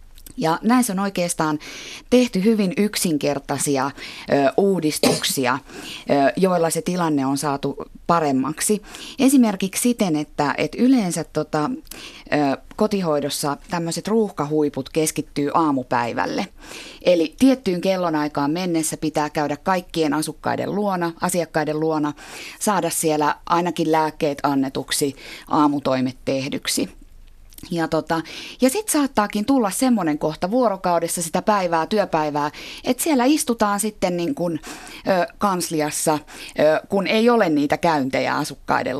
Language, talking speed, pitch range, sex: Finnish, 100 wpm, 150-205 Hz, female